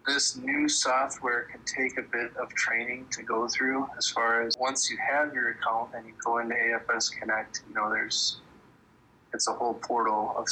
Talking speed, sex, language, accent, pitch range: 195 wpm, male, English, American, 115-145 Hz